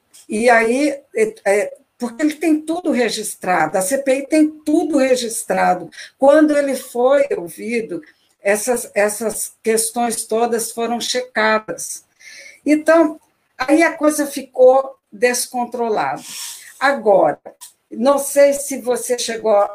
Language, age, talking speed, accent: Portuguese, 60-79, 105 wpm, Brazilian